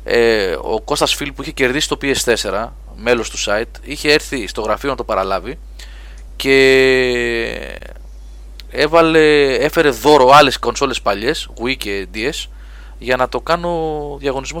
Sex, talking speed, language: male, 125 wpm, Greek